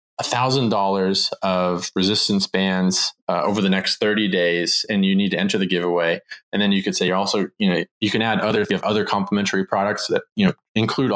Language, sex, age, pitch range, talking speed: English, male, 20-39, 95-130 Hz, 220 wpm